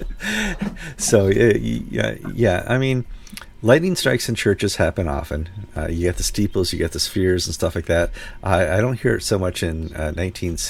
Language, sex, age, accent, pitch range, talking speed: English, male, 50-69, American, 80-105 Hz, 185 wpm